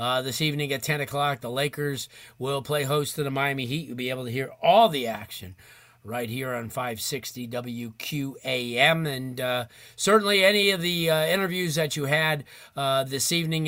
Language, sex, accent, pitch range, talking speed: English, male, American, 125-150 Hz, 185 wpm